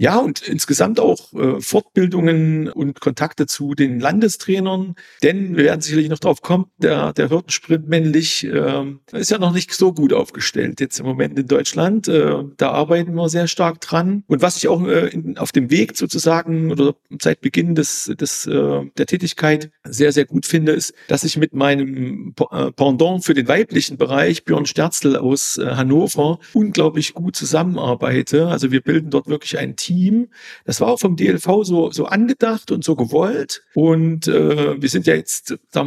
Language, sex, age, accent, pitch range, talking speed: German, male, 50-69, German, 145-175 Hz, 180 wpm